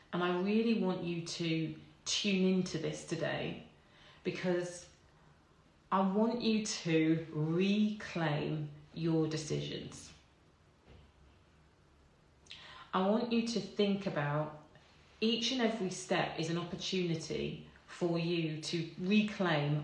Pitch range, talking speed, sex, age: 150-190 Hz, 105 wpm, female, 30-49